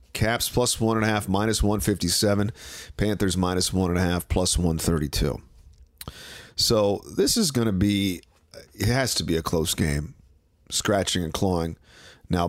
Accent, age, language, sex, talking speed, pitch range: American, 40-59, English, male, 160 wpm, 85-115 Hz